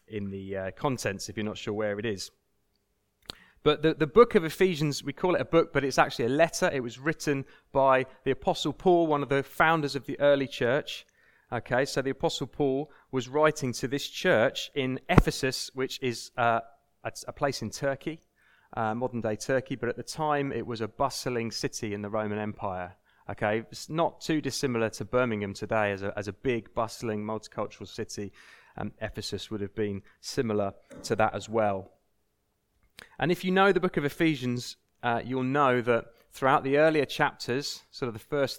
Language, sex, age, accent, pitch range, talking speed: English, male, 30-49, British, 105-140 Hz, 200 wpm